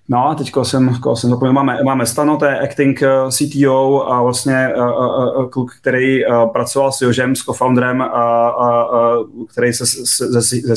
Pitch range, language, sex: 120-130 Hz, Czech, male